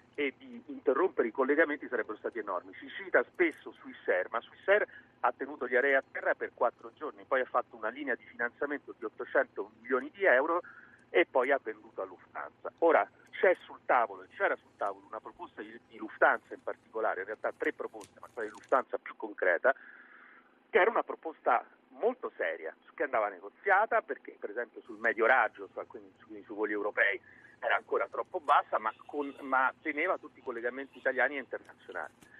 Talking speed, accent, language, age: 185 wpm, native, Italian, 40-59